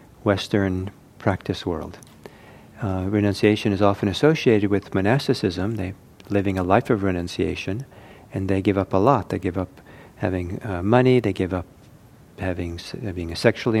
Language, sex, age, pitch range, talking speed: English, male, 50-69, 95-115 Hz, 150 wpm